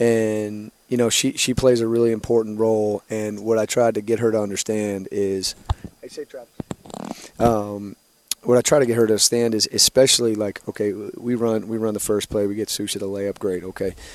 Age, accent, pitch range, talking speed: 30-49, American, 100-115 Hz, 200 wpm